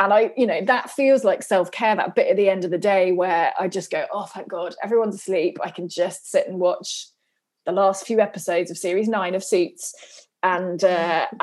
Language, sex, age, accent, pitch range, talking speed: English, female, 20-39, British, 180-220 Hz, 220 wpm